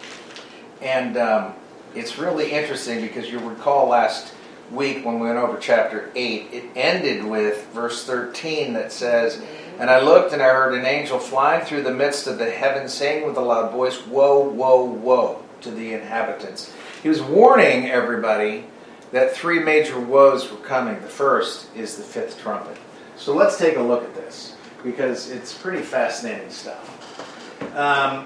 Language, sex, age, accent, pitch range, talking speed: English, male, 40-59, American, 120-145 Hz, 165 wpm